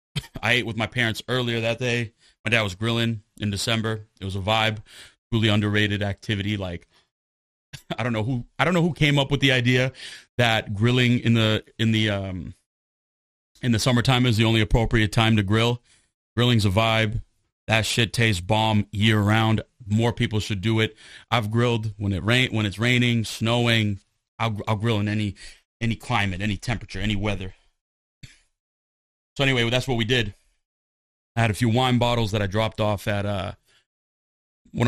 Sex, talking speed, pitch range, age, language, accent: male, 185 wpm, 100-115 Hz, 30-49, English, American